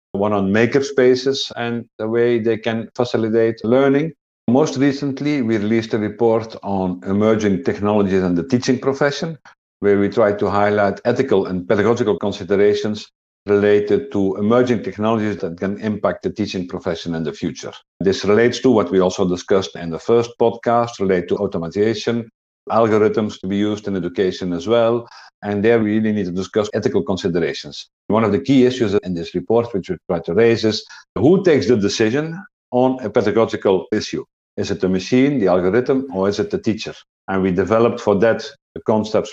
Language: English